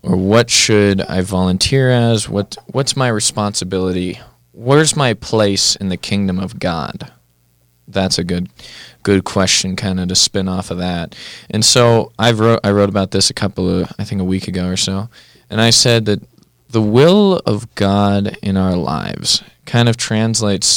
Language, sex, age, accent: English, male, 20-39, American